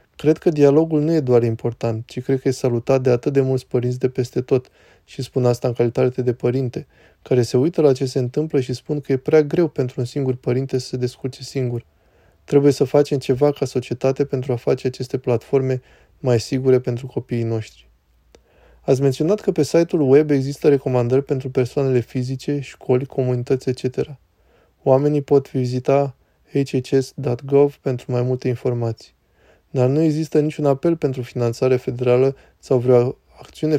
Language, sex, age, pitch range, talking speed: Romanian, male, 20-39, 125-140 Hz, 170 wpm